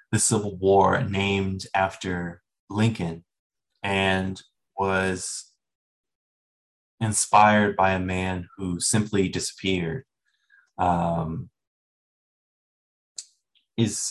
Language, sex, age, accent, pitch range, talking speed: English, male, 20-39, American, 90-105 Hz, 70 wpm